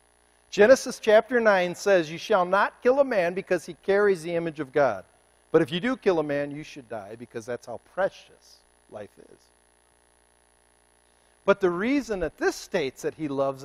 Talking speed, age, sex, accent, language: 185 wpm, 50-69, male, American, English